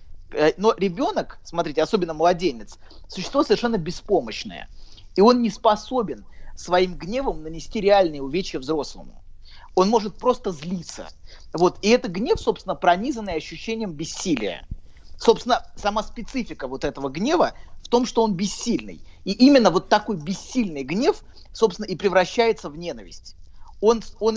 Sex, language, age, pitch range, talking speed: male, Russian, 30-49, 160-215 Hz, 130 wpm